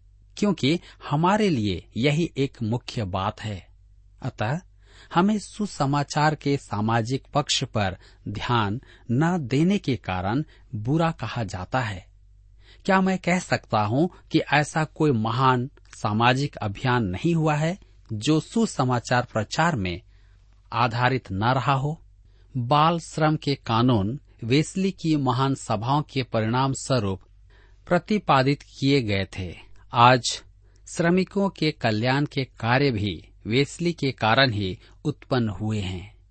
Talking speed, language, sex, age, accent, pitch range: 125 wpm, Hindi, male, 40-59, native, 100-150 Hz